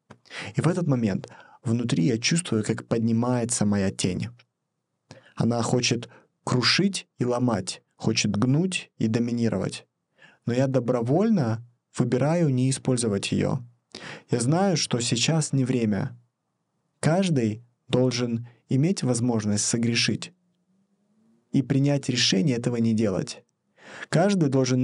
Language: Russian